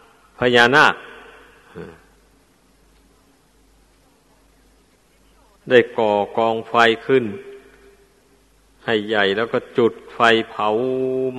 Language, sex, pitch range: Thai, male, 110-125 Hz